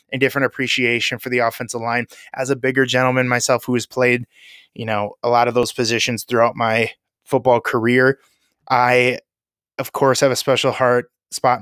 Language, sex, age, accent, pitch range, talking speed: English, male, 20-39, American, 120-140 Hz, 170 wpm